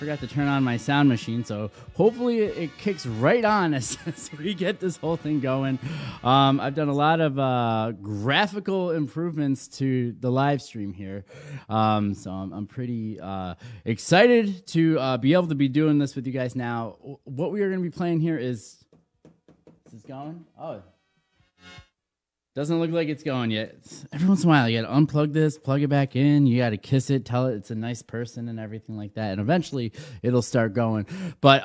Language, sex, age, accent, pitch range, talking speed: English, male, 20-39, American, 115-150 Hz, 205 wpm